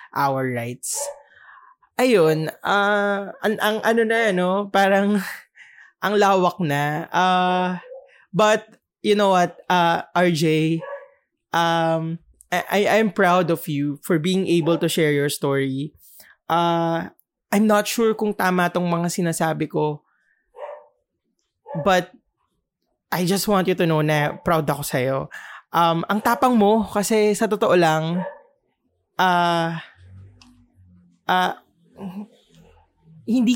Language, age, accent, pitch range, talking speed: English, 20-39, Filipino, 165-210 Hz, 125 wpm